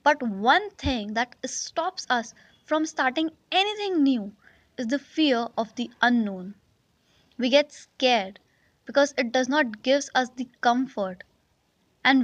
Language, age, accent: English, 20-39, Indian